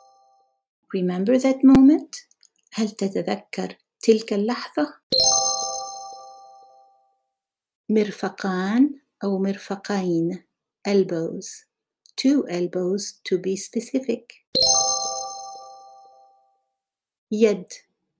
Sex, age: female, 60-79